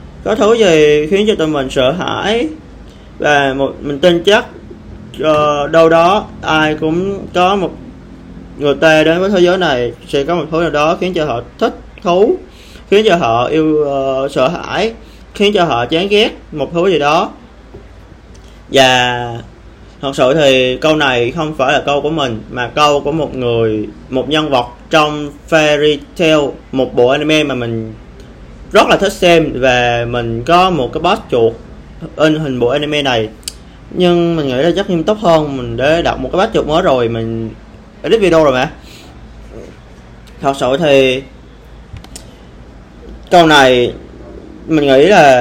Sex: male